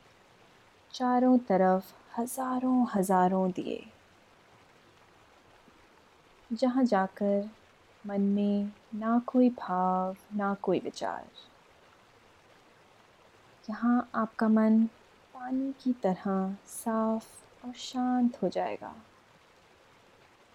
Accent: native